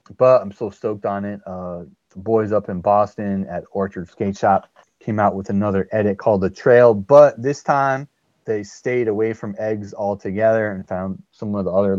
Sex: male